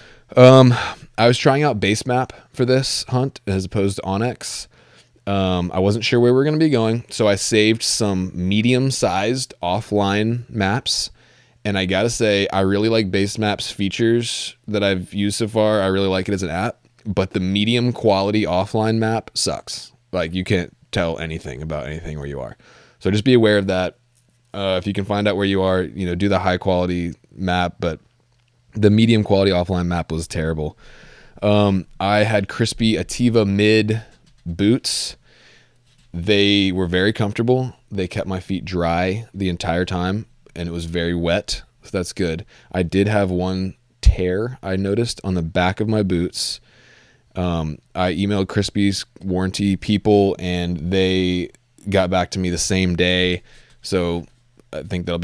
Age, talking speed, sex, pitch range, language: 20-39, 175 wpm, male, 90-110 Hz, English